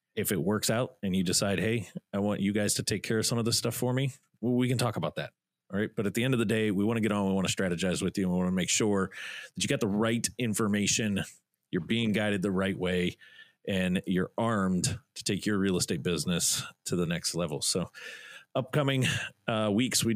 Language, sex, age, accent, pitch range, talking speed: English, male, 30-49, American, 95-110 Hz, 250 wpm